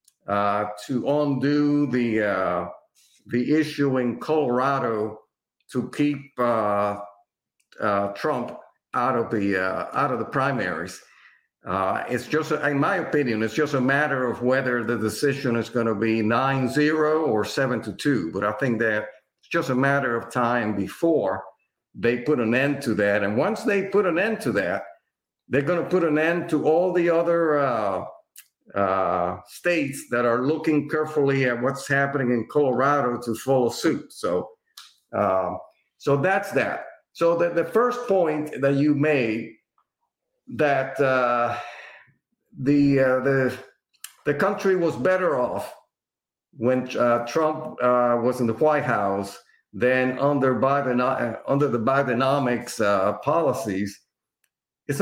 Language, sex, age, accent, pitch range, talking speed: English, male, 60-79, American, 120-150 Hz, 150 wpm